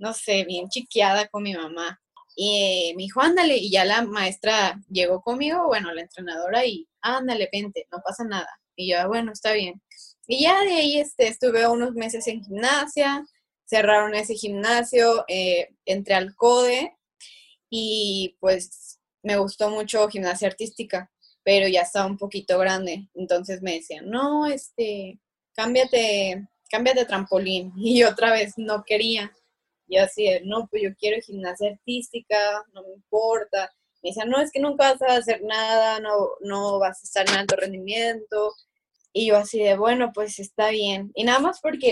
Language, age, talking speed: Spanish, 20-39, 165 wpm